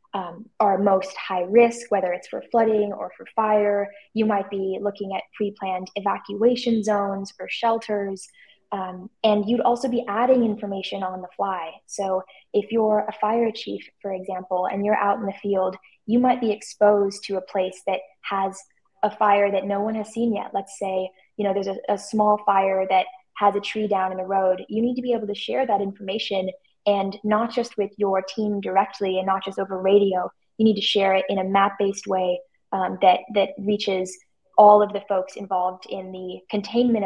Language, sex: English, female